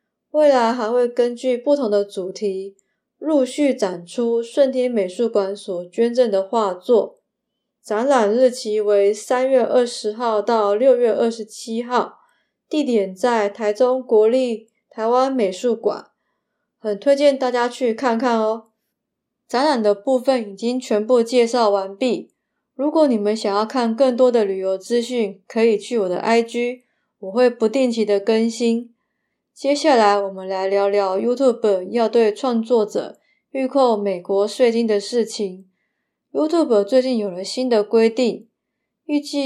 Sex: female